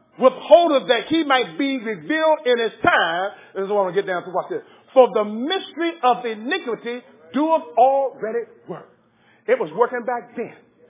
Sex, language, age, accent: male, English, 40-59, American